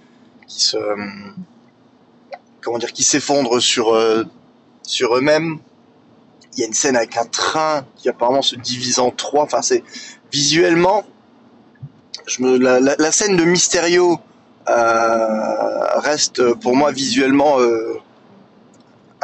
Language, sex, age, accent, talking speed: French, male, 20-39, French, 125 wpm